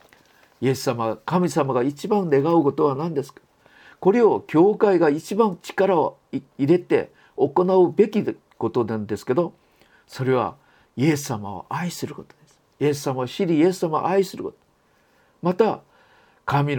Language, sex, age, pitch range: Japanese, male, 50-69, 130-205 Hz